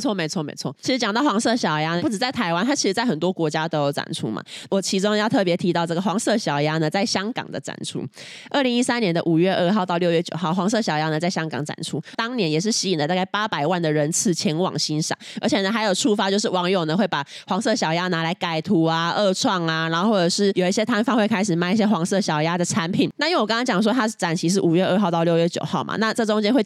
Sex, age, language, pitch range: female, 20-39, Chinese, 165-215 Hz